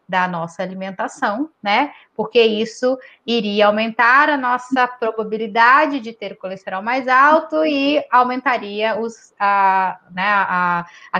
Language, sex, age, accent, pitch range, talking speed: Portuguese, female, 10-29, Brazilian, 200-275 Hz, 105 wpm